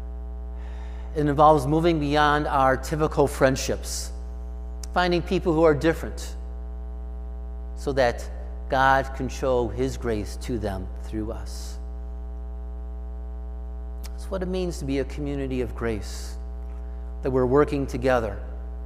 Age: 50-69